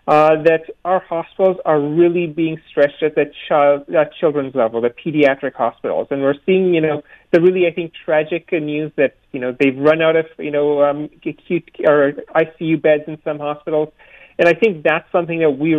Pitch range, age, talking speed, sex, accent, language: 150-180 Hz, 30-49, 190 wpm, male, American, English